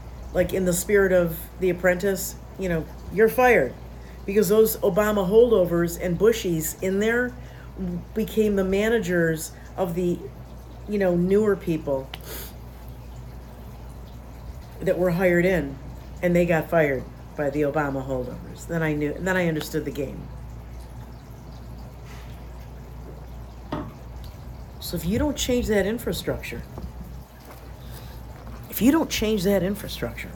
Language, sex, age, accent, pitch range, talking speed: English, female, 50-69, American, 120-185 Hz, 125 wpm